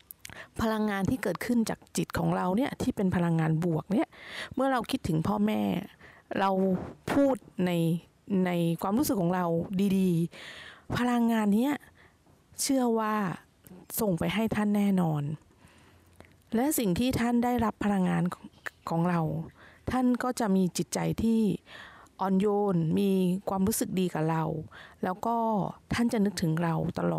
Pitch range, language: 175-225 Hz, Thai